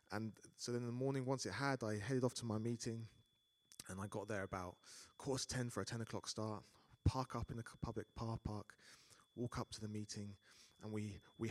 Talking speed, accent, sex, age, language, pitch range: 225 wpm, British, male, 30-49, English, 105-125 Hz